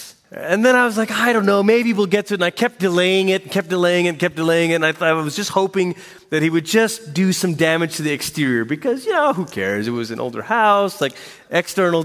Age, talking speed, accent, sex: 30-49, 270 wpm, American, male